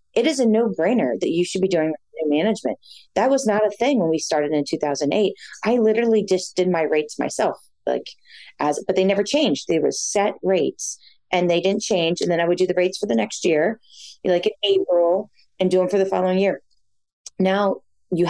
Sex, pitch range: female, 155-195 Hz